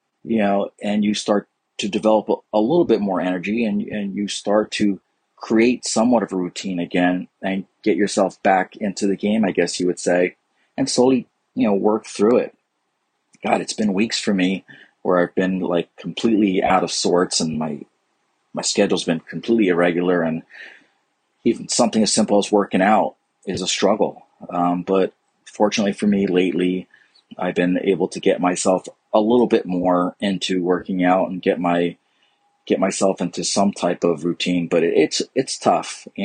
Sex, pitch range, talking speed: male, 90-100 Hz, 180 wpm